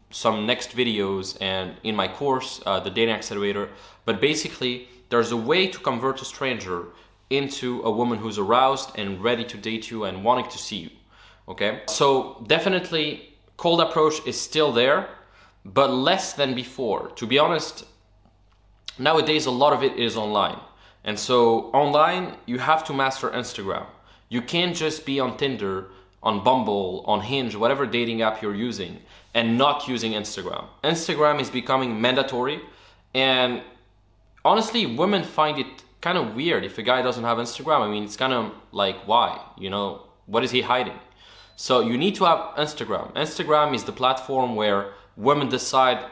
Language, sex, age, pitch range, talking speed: English, male, 20-39, 110-140 Hz, 165 wpm